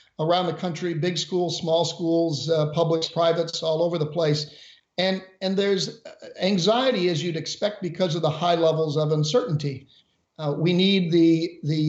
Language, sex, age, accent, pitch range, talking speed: English, male, 50-69, American, 155-175 Hz, 165 wpm